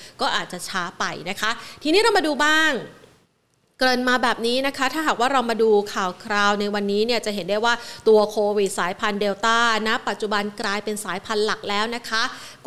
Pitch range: 205-245 Hz